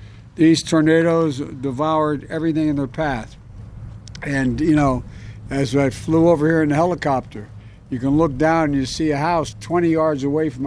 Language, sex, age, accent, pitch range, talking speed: English, male, 60-79, American, 125-165 Hz, 175 wpm